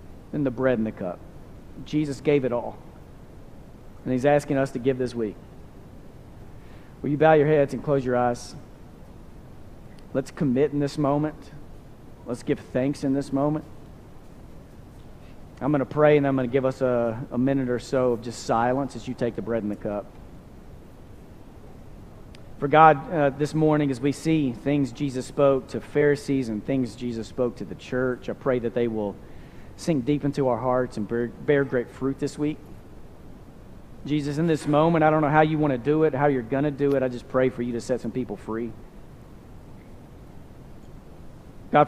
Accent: American